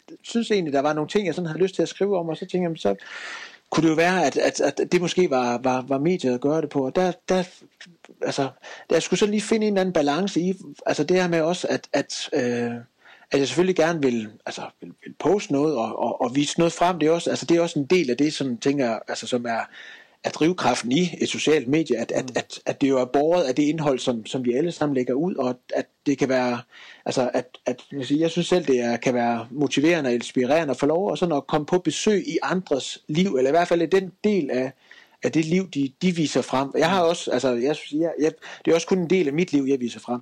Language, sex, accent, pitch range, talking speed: Danish, male, native, 130-180 Hz, 275 wpm